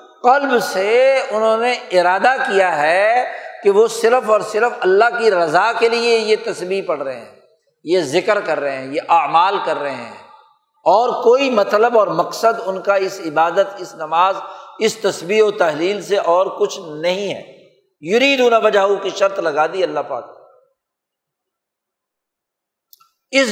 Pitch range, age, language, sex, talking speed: 195-270 Hz, 60-79, Urdu, male, 160 wpm